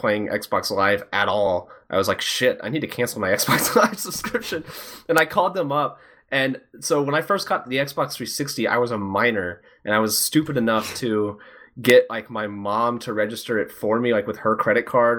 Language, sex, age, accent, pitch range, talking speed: English, male, 20-39, American, 110-150 Hz, 215 wpm